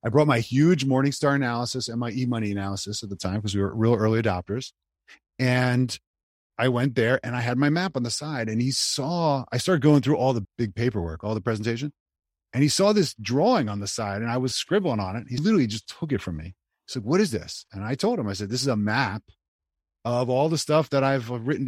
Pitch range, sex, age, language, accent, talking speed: 105-145 Hz, male, 30-49, English, American, 245 wpm